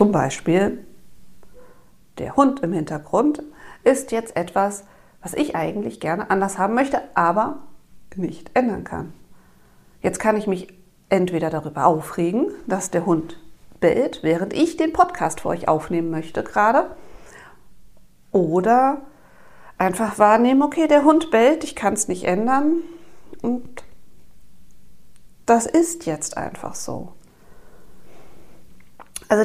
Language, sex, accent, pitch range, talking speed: German, female, German, 185-265 Hz, 120 wpm